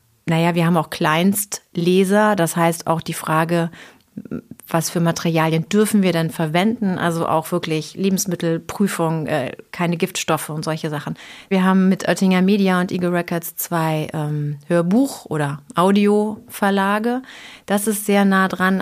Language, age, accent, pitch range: German, 30-49, German, 160-190 Hz